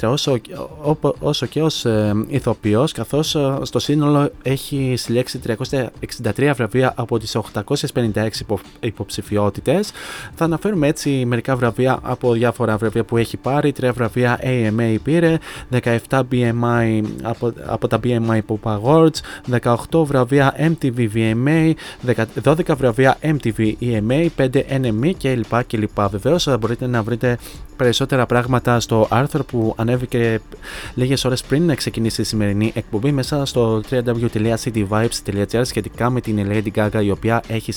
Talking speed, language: 130 wpm, Greek